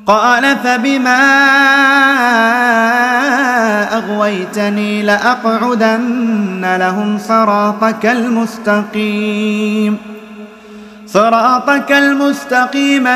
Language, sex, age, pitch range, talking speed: Finnish, male, 30-49, 210-245 Hz, 45 wpm